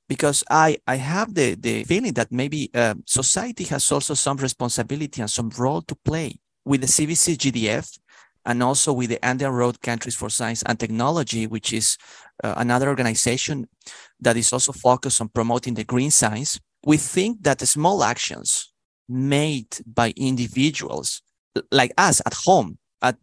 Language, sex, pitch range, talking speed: English, male, 120-145 Hz, 160 wpm